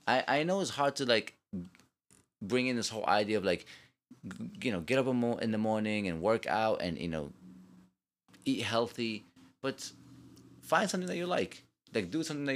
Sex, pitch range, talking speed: male, 85-120 Hz, 180 wpm